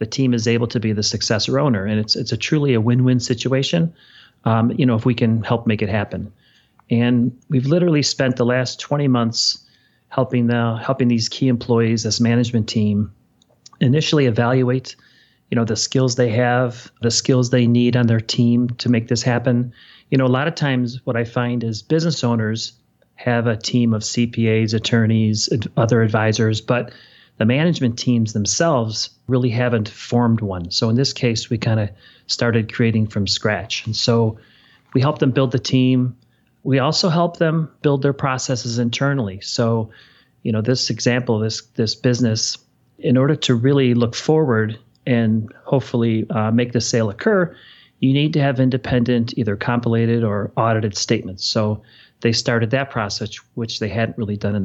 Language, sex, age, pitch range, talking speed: English, male, 30-49, 115-130 Hz, 180 wpm